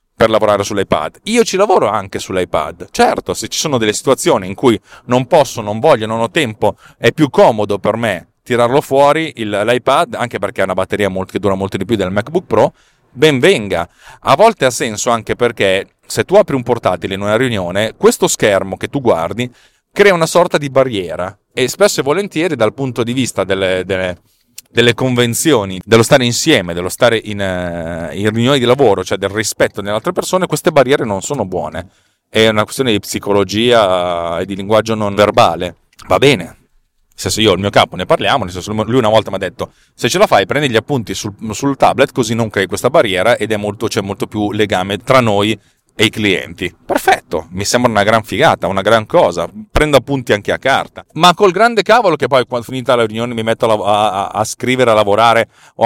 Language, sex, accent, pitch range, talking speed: Italian, male, native, 100-130 Hz, 200 wpm